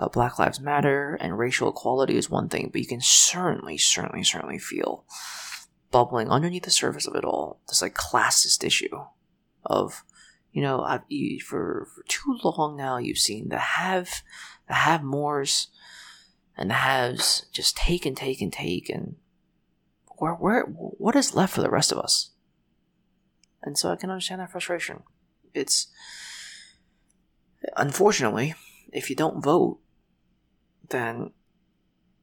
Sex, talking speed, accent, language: male, 145 wpm, American, English